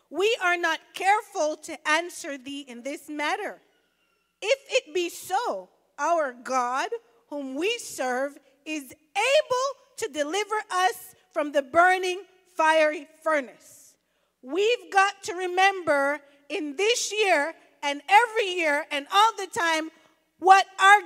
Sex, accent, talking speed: female, American, 130 wpm